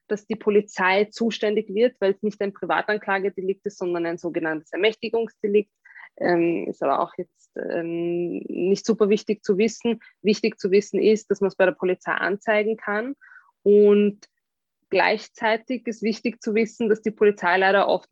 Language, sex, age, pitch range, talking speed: German, female, 20-39, 185-215 Hz, 160 wpm